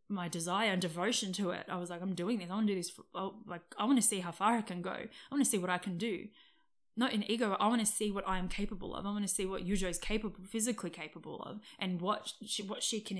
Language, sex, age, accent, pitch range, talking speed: English, female, 20-39, Australian, 185-230 Hz, 305 wpm